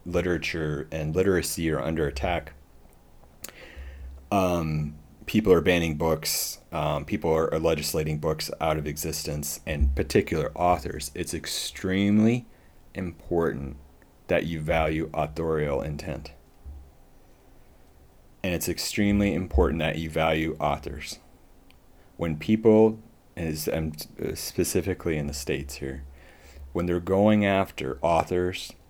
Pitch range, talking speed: 75-85 Hz, 105 wpm